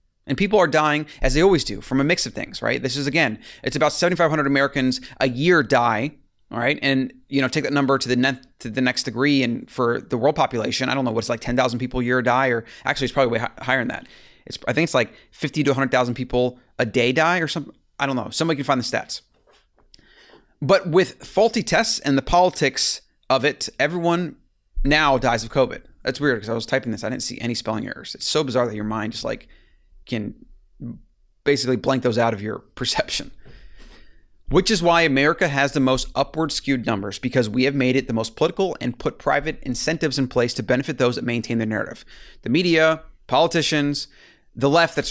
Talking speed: 220 wpm